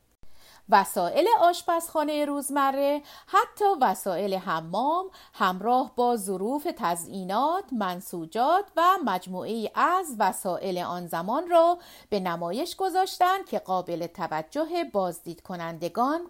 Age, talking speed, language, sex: 50-69, 95 wpm, Persian, female